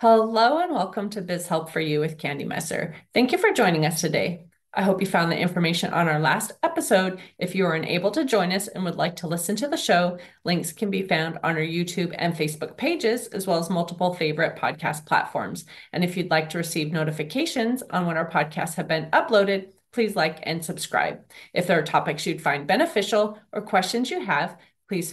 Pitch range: 165-225 Hz